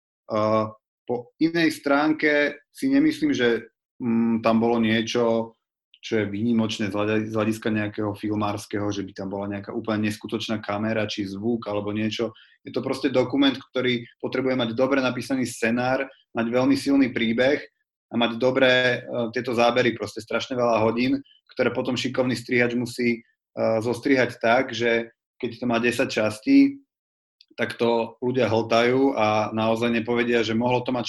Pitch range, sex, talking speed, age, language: 110-125 Hz, male, 150 wpm, 30-49, Slovak